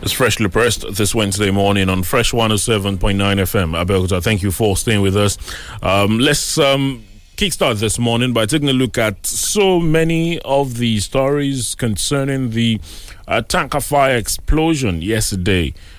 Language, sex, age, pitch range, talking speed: English, male, 30-49, 95-125 Hz, 150 wpm